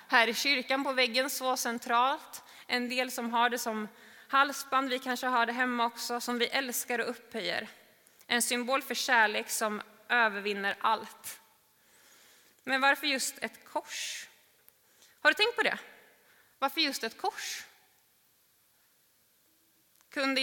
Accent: native